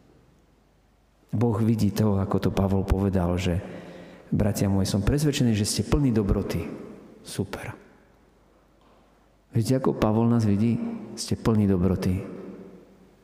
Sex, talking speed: male, 115 wpm